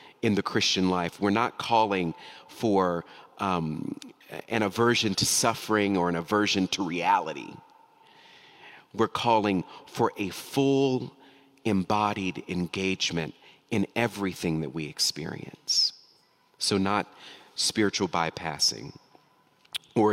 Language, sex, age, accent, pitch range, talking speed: English, male, 40-59, American, 95-135 Hz, 105 wpm